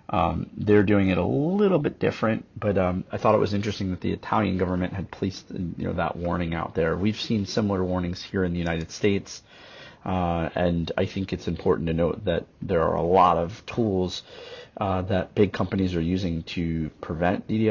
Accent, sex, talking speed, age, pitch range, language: American, male, 195 wpm, 30-49, 85-95 Hz, English